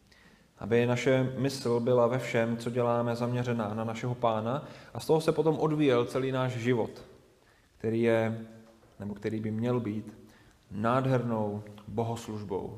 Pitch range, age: 105-130 Hz, 30-49